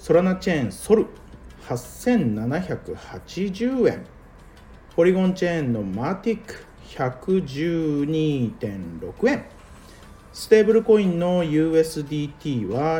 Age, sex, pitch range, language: 40-59, male, 110-160 Hz, Japanese